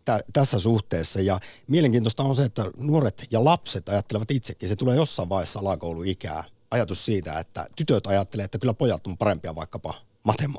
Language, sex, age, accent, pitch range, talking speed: Finnish, male, 50-69, native, 95-120 Hz, 170 wpm